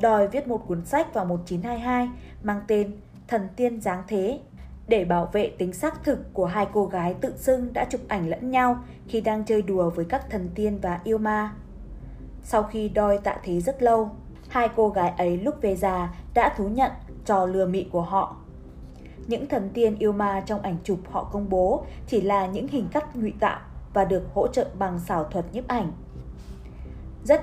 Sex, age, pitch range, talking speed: female, 20-39, 180-230 Hz, 200 wpm